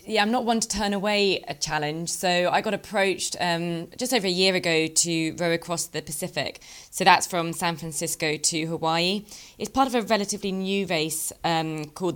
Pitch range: 155-185 Hz